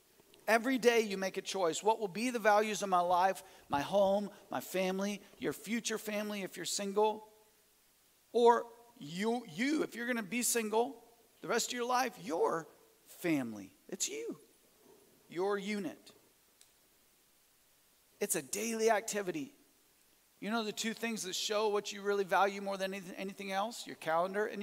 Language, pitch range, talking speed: English, 195-245 Hz, 160 wpm